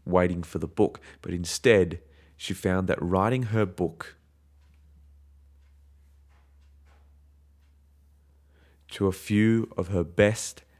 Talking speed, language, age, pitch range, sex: 100 wpm, English, 30-49, 80-105 Hz, male